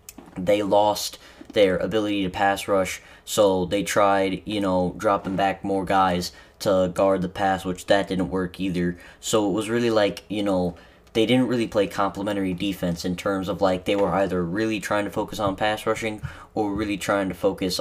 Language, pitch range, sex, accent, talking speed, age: English, 90-100 Hz, male, American, 190 wpm, 10-29